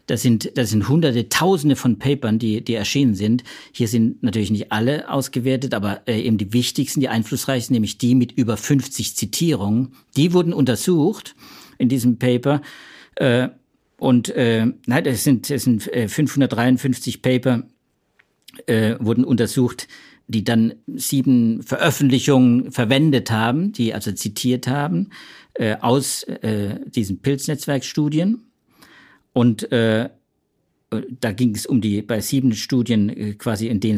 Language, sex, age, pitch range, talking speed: German, male, 50-69, 110-135 Hz, 130 wpm